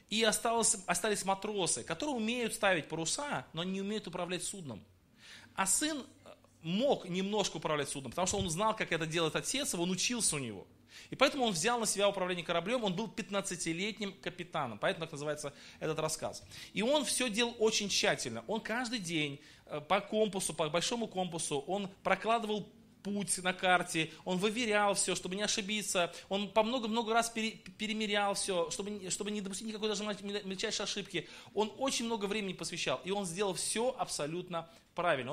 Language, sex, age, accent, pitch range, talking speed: Russian, male, 20-39, native, 165-220 Hz, 165 wpm